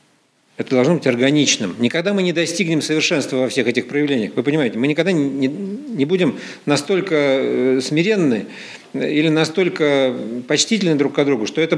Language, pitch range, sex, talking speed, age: Russian, 130-165 Hz, male, 155 wpm, 50-69